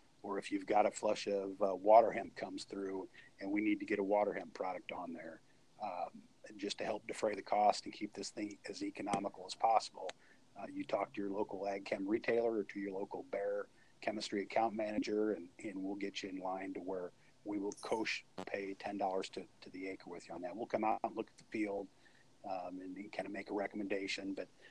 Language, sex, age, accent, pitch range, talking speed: English, male, 40-59, American, 100-130 Hz, 225 wpm